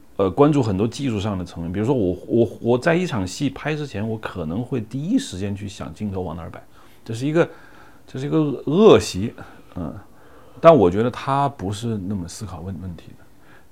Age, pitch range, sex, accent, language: 40-59, 95-135 Hz, male, native, Chinese